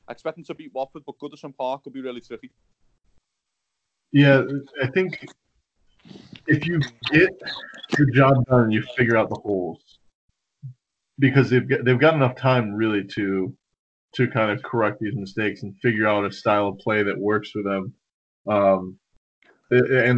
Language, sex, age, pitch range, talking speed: English, male, 20-39, 105-130 Hz, 165 wpm